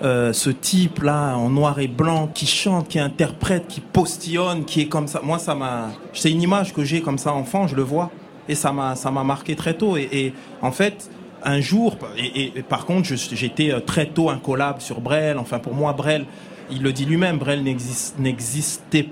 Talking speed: 205 wpm